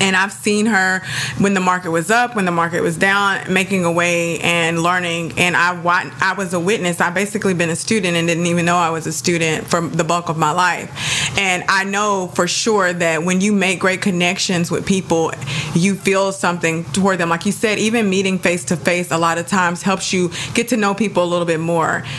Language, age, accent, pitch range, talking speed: English, 20-39, American, 170-195 Hz, 225 wpm